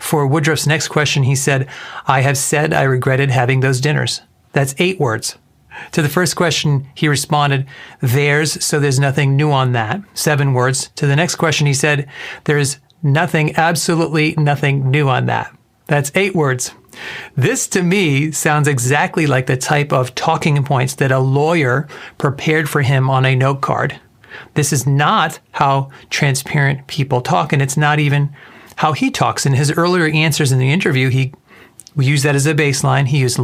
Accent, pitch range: American, 135-160 Hz